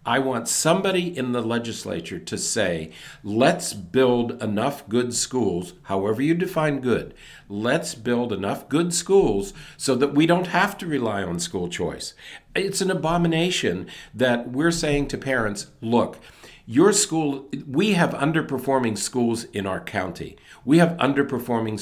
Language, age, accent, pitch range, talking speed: English, 50-69, American, 115-160 Hz, 145 wpm